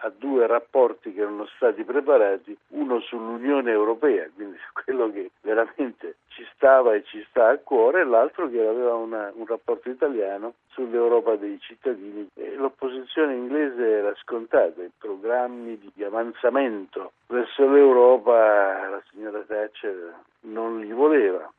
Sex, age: male, 60-79